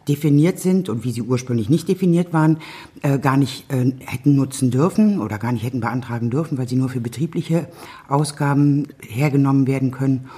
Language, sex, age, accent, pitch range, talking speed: German, female, 60-79, German, 135-160 Hz, 180 wpm